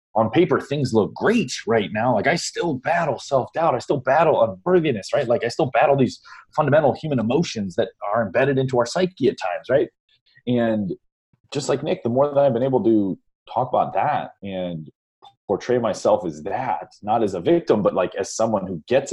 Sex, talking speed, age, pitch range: male, 200 wpm, 30-49, 100-135 Hz